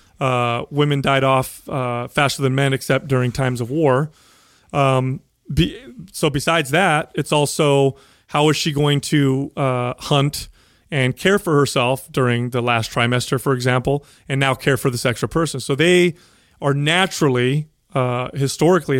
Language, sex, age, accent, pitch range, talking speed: English, male, 30-49, American, 130-155 Hz, 155 wpm